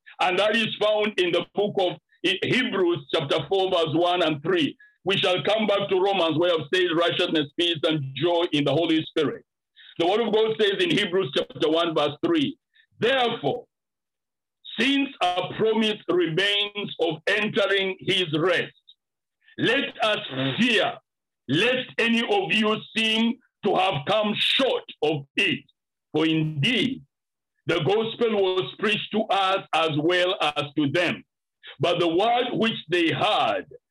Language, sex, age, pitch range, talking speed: English, male, 50-69, 170-240 Hz, 150 wpm